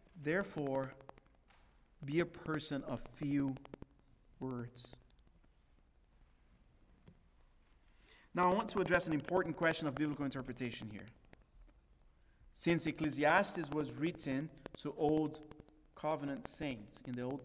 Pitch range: 140-180 Hz